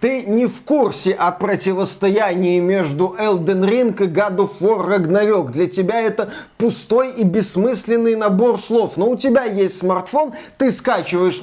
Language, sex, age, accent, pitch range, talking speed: Russian, male, 20-39, native, 175-215 Hz, 140 wpm